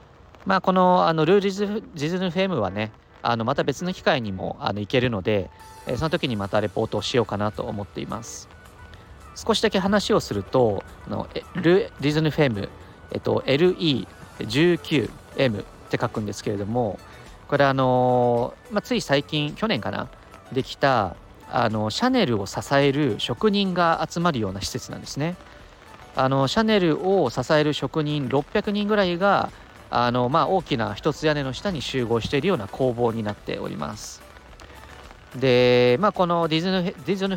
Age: 40-59